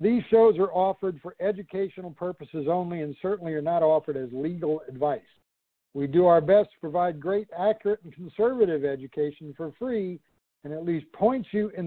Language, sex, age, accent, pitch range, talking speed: English, male, 60-79, American, 150-185 Hz, 175 wpm